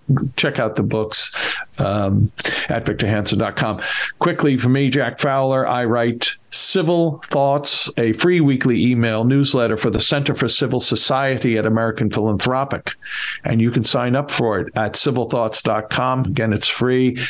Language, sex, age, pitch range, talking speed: English, male, 50-69, 115-140 Hz, 145 wpm